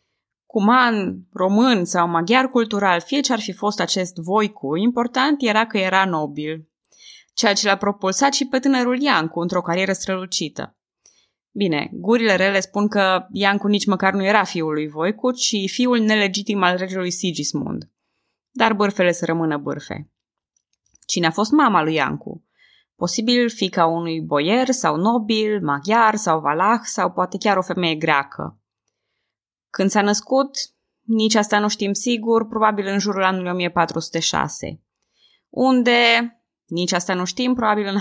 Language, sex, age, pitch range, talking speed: Romanian, female, 20-39, 175-230 Hz, 145 wpm